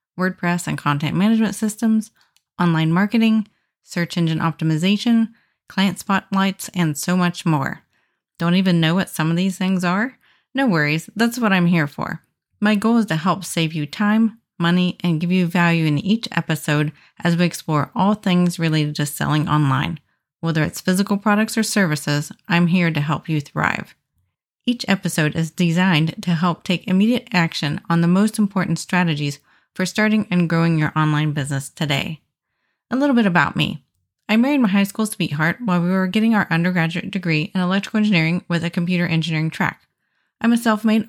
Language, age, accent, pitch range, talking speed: English, 30-49, American, 165-210 Hz, 175 wpm